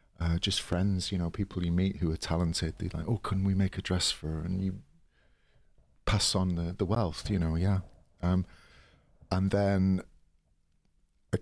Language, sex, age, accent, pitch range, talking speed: English, male, 40-59, British, 85-100 Hz, 185 wpm